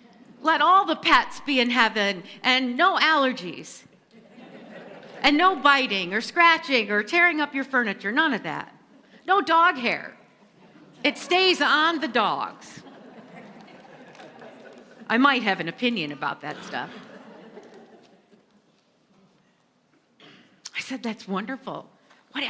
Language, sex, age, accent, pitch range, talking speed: English, female, 50-69, American, 210-285 Hz, 115 wpm